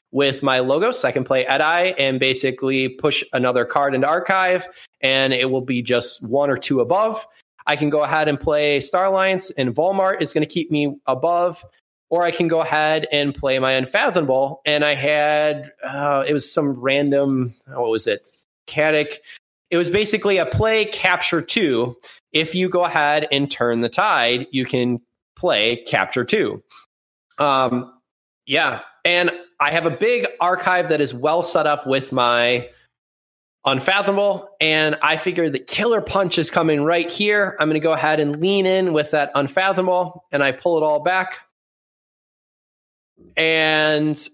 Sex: male